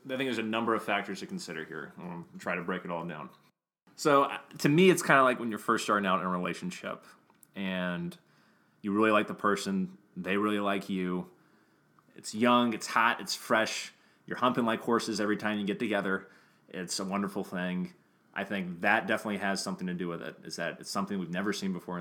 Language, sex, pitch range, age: English, male, 95-120 Hz, 30-49